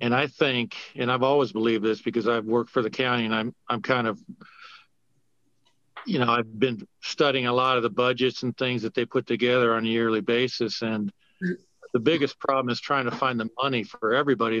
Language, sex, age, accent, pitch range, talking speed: English, male, 50-69, American, 115-135 Hz, 210 wpm